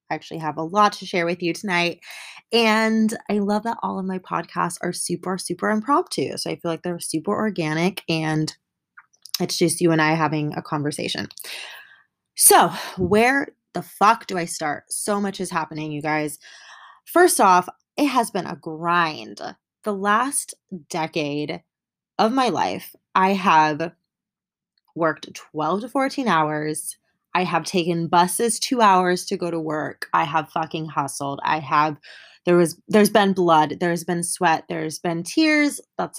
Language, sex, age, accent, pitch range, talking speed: English, female, 20-39, American, 160-205 Hz, 165 wpm